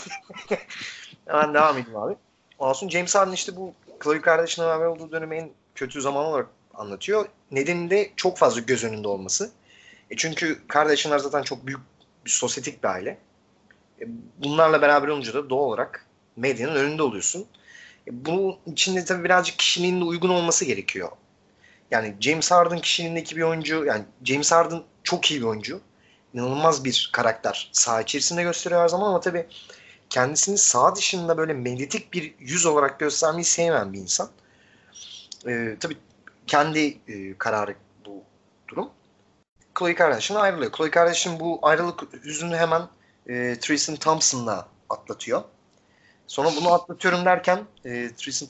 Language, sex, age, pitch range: Turkish, male, 30-49, 125-170 Hz